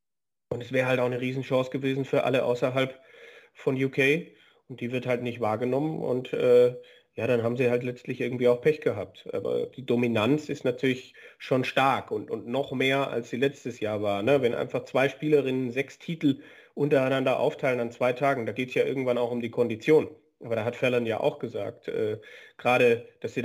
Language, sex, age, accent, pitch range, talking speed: German, male, 30-49, German, 120-140 Hz, 200 wpm